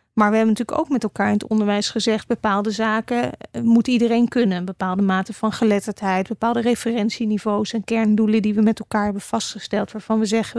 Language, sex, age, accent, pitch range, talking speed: Dutch, female, 30-49, Dutch, 210-235 Hz, 195 wpm